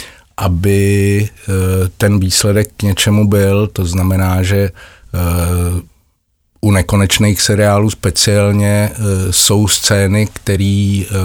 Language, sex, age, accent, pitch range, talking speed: Czech, male, 50-69, native, 95-115 Hz, 85 wpm